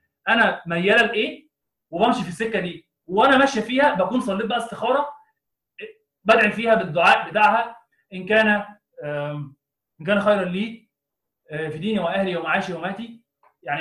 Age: 20-39